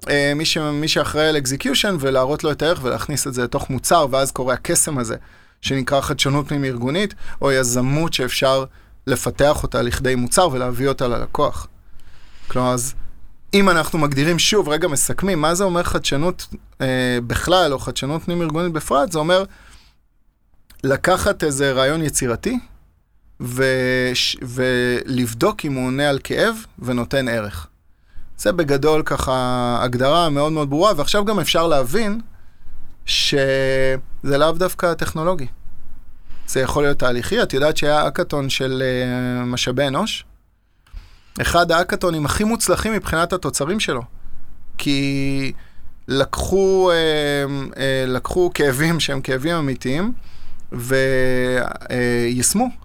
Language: Hebrew